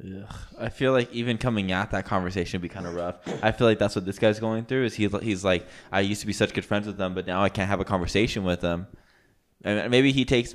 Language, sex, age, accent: English, male, 20-39, American